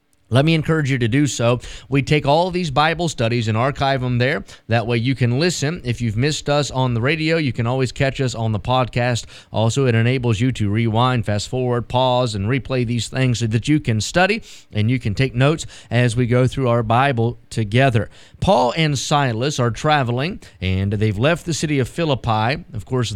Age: 30-49